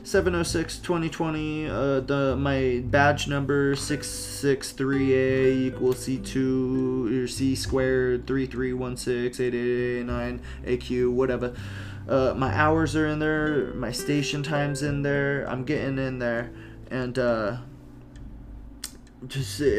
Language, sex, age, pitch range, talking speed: English, male, 20-39, 120-135 Hz, 140 wpm